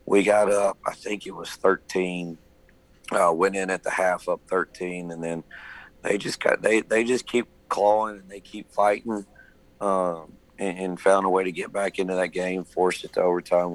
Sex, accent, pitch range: male, American, 85-95 Hz